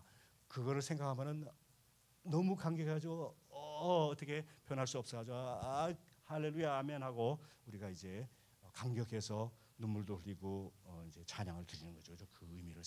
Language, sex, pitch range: Korean, male, 95-135 Hz